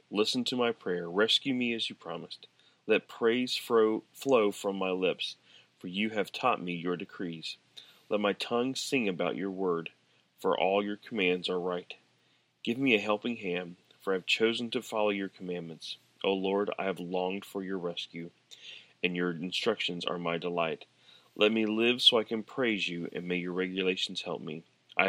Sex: male